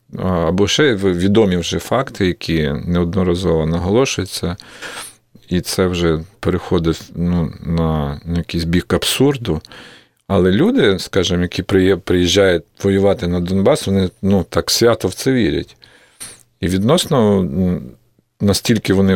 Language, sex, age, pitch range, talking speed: Russian, male, 40-59, 85-100 Hz, 115 wpm